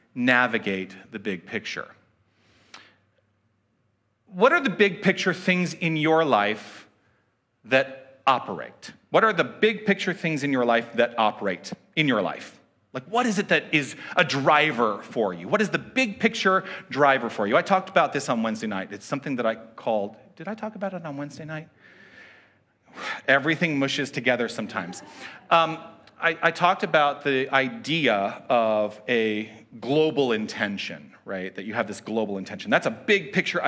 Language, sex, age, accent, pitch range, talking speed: English, male, 40-59, American, 110-185 Hz, 165 wpm